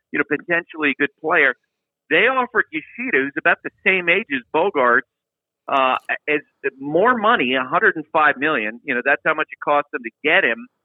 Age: 50-69